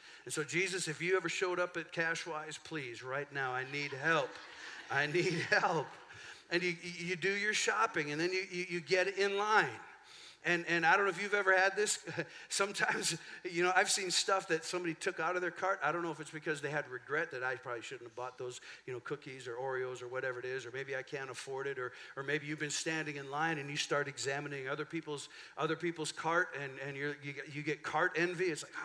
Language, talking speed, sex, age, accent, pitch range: English, 235 wpm, male, 50-69, American, 145-180 Hz